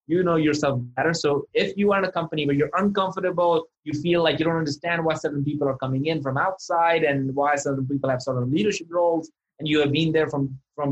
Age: 20-39